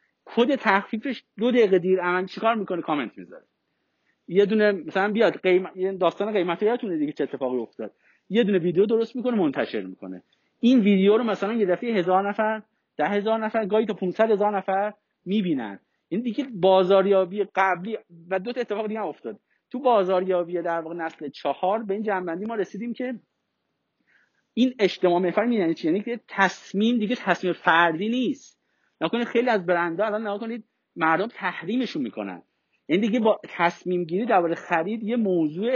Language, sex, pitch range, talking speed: Persian, male, 185-230 Hz, 170 wpm